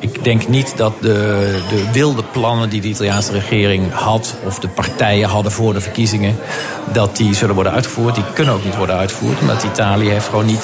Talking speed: 205 wpm